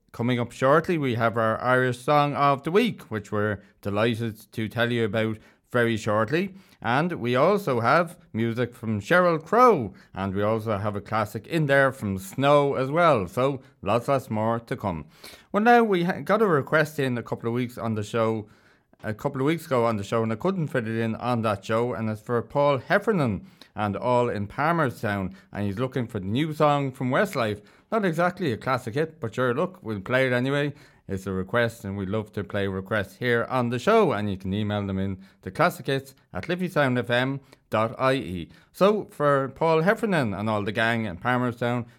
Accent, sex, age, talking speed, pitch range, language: Irish, male, 30-49, 200 wpm, 110-145 Hz, English